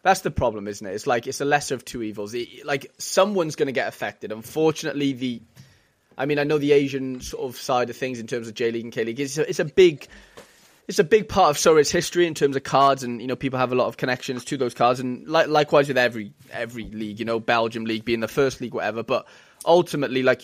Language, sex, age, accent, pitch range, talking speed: English, male, 20-39, British, 120-145 Hz, 260 wpm